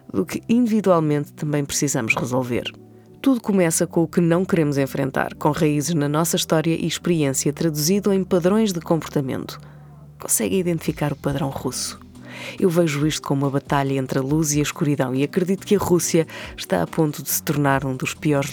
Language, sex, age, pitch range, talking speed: Portuguese, female, 20-39, 140-185 Hz, 185 wpm